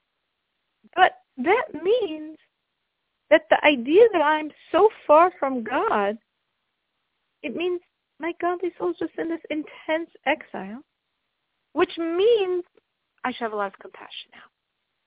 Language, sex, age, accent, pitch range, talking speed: English, female, 40-59, American, 220-335 Hz, 130 wpm